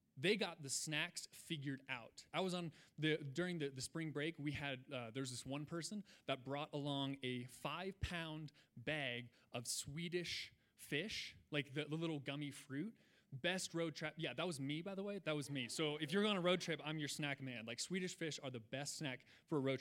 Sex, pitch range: male, 140-185 Hz